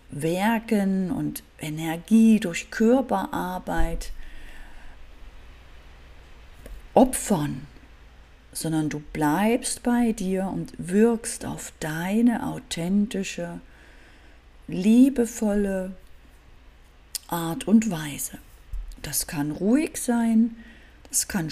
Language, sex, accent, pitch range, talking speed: German, female, German, 155-230 Hz, 75 wpm